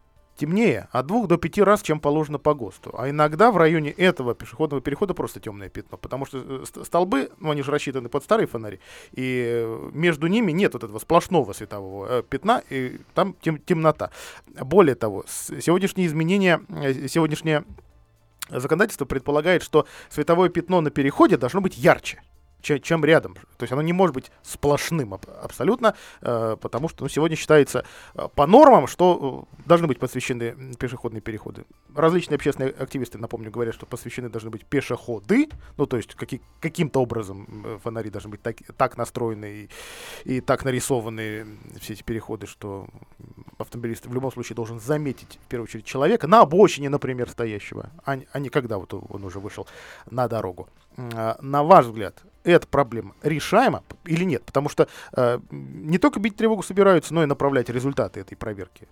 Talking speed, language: 155 wpm, Russian